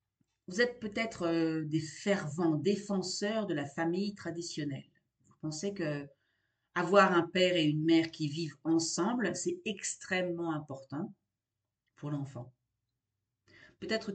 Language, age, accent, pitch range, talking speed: French, 40-59, French, 125-180 Hz, 120 wpm